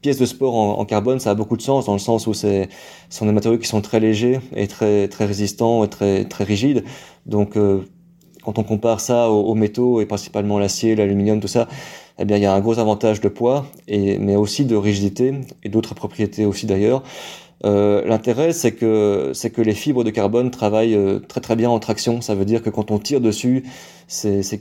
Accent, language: French, French